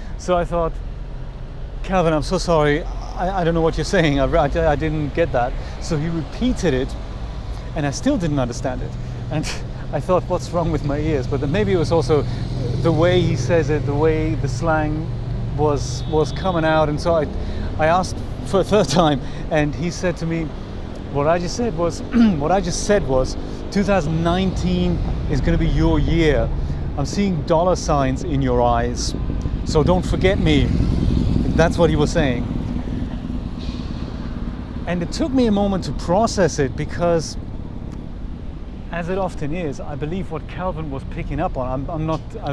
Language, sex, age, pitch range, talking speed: English, male, 30-49, 130-170 Hz, 180 wpm